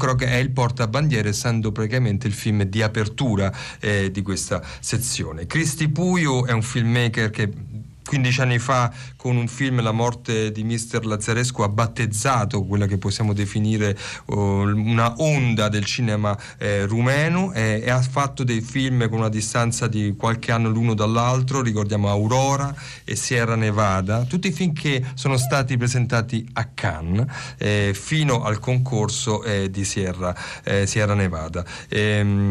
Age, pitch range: 40-59, 105-130 Hz